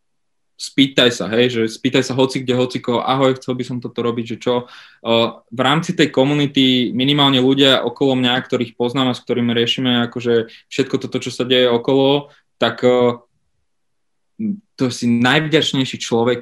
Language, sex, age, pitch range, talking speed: Slovak, male, 20-39, 120-145 Hz, 160 wpm